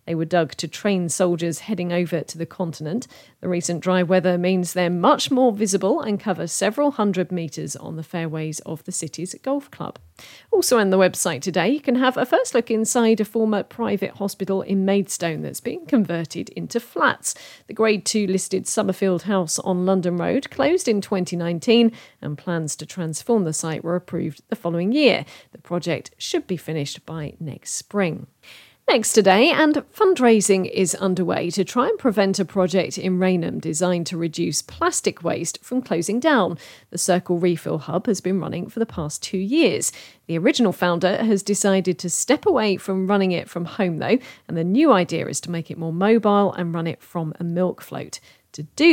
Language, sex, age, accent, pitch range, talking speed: English, female, 40-59, British, 170-220 Hz, 190 wpm